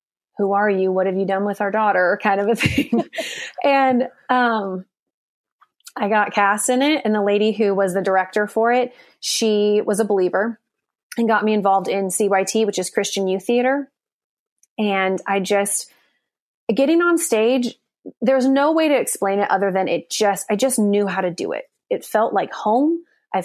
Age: 30-49